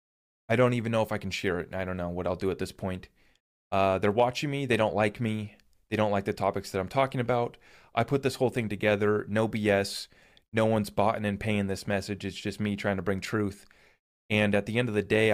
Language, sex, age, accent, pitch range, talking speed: English, male, 30-49, American, 105-130 Hz, 250 wpm